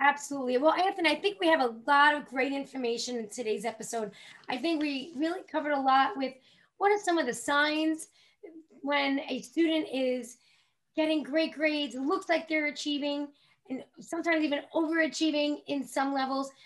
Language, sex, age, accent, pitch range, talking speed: English, female, 10-29, American, 255-315 Hz, 170 wpm